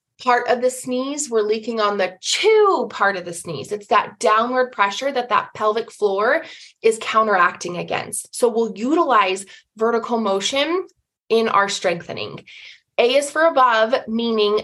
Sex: female